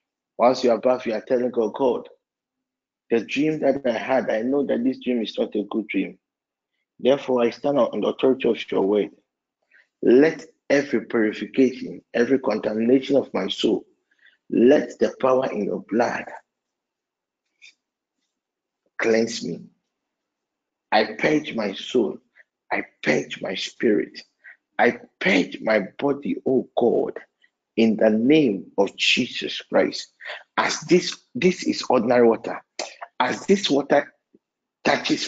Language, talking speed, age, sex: English, 135 wpm, 50-69, male